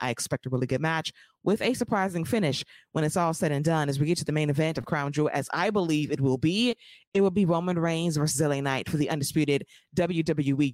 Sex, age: female, 20-39